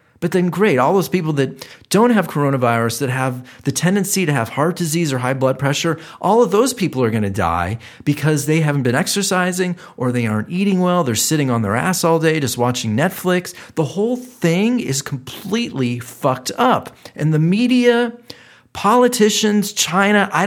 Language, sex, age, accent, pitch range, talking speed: English, male, 40-59, American, 130-195 Hz, 185 wpm